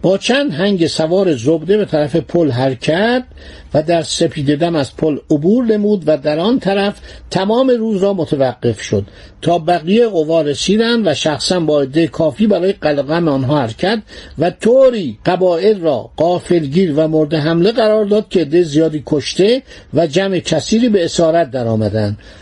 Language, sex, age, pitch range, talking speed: Persian, male, 60-79, 150-210 Hz, 160 wpm